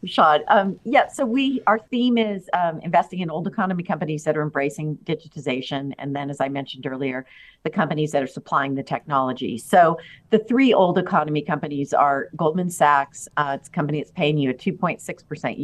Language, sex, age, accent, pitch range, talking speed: English, female, 50-69, American, 140-170 Hz, 190 wpm